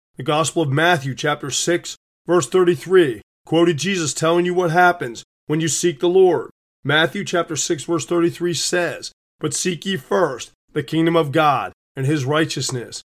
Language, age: English, 30-49